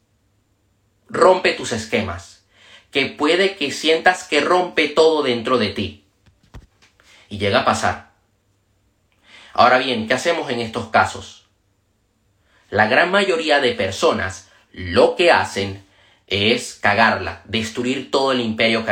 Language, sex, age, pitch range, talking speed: Spanish, male, 30-49, 100-135 Hz, 125 wpm